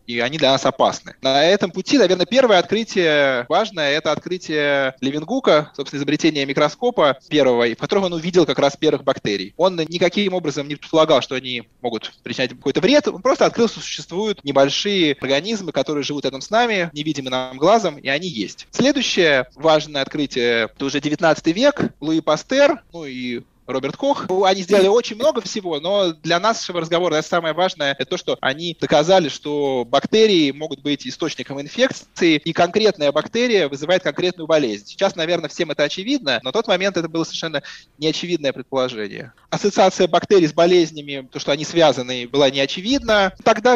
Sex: male